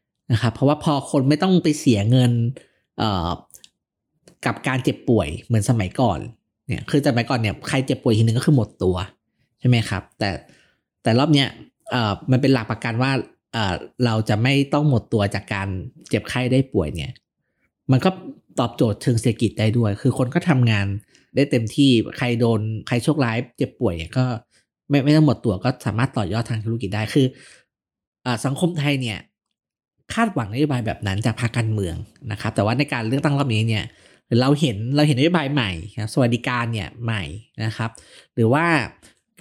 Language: Thai